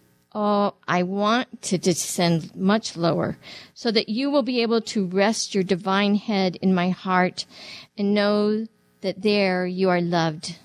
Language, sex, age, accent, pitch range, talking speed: English, female, 50-69, American, 180-235 Hz, 160 wpm